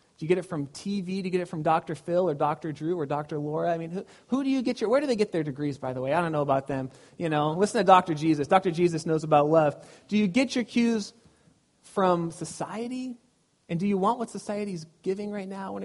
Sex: male